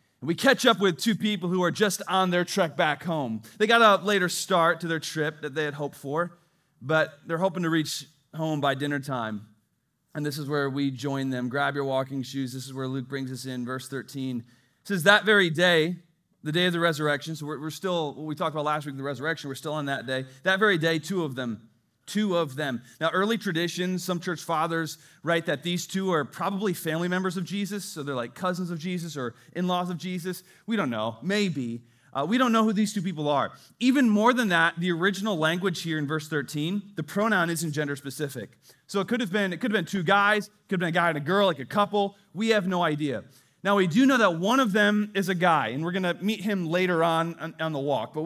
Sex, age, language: male, 30-49, English